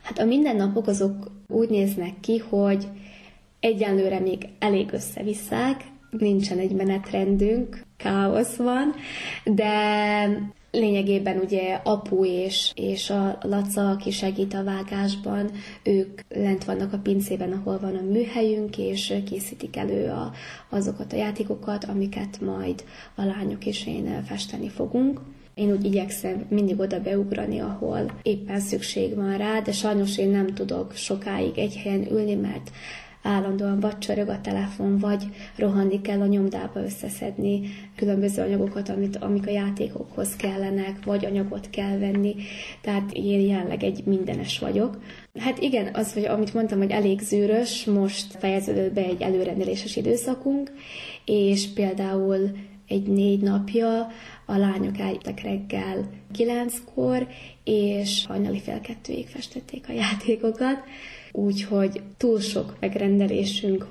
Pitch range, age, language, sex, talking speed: 195-220 Hz, 20-39, Hungarian, female, 125 wpm